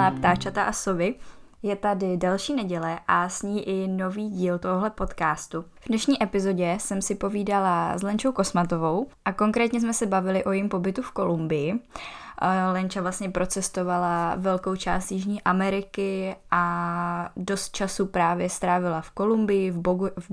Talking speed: 150 wpm